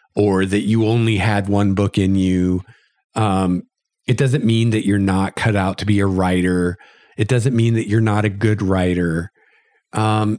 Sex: male